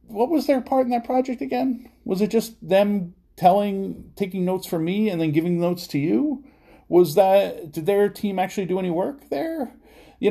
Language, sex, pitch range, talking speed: English, male, 130-185 Hz, 200 wpm